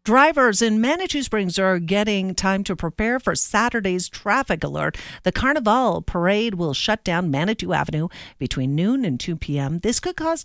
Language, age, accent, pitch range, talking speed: English, 50-69, American, 160-220 Hz, 165 wpm